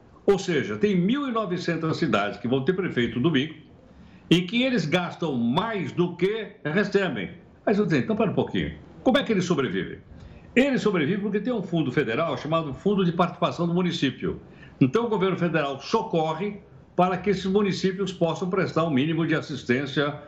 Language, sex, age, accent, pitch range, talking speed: Portuguese, male, 60-79, Brazilian, 155-215 Hz, 180 wpm